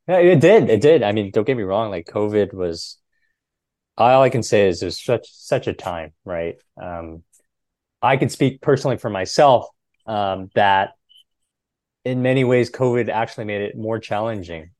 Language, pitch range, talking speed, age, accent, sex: English, 90-120 Hz, 175 wpm, 30-49, American, male